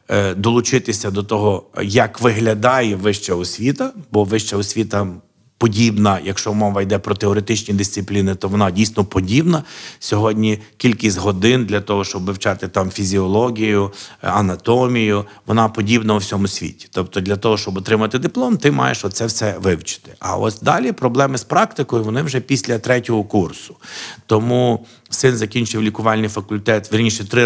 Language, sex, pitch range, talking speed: Ukrainian, male, 100-120 Hz, 140 wpm